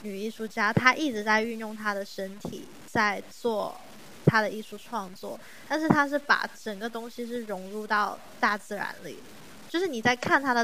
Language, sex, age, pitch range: Chinese, female, 20-39, 200-240 Hz